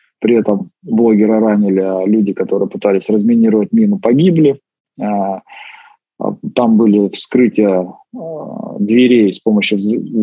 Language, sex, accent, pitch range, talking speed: Russian, male, native, 110-145 Hz, 100 wpm